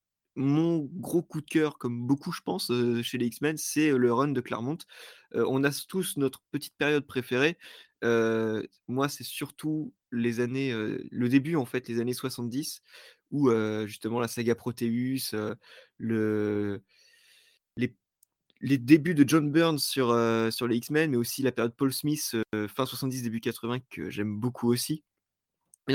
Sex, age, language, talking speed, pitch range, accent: male, 20-39, French, 170 wpm, 120-145 Hz, French